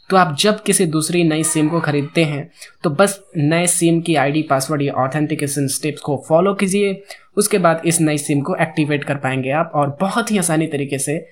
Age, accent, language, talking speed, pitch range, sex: 20-39, native, Hindi, 205 wpm, 155-190 Hz, male